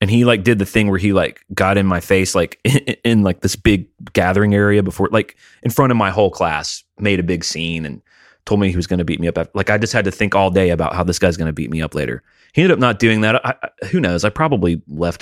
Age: 30-49